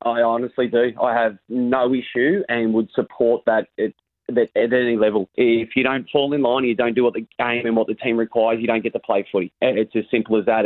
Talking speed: 250 wpm